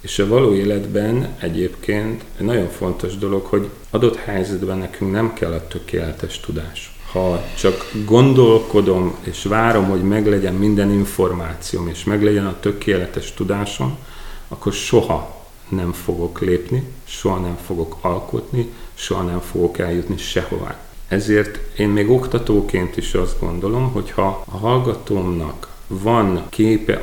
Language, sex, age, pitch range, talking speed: Hungarian, male, 40-59, 90-105 Hz, 130 wpm